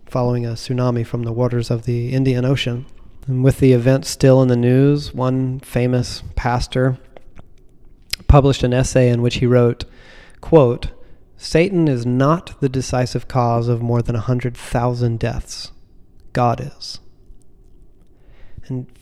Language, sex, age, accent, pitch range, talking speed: English, male, 30-49, American, 120-135 Hz, 135 wpm